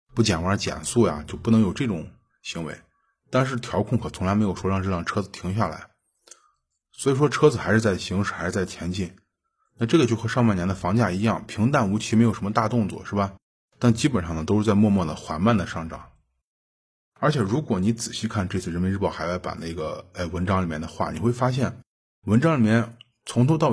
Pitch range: 90-120 Hz